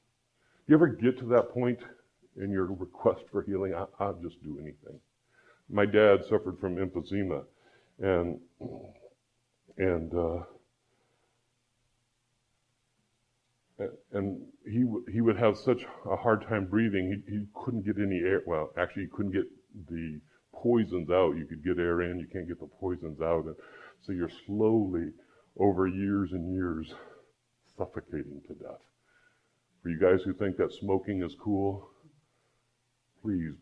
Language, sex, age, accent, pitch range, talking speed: English, female, 50-69, American, 90-120 Hz, 145 wpm